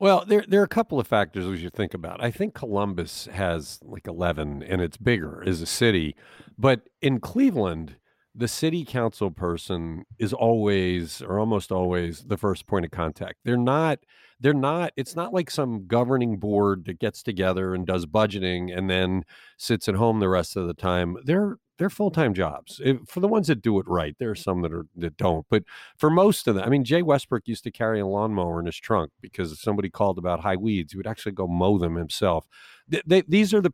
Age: 50-69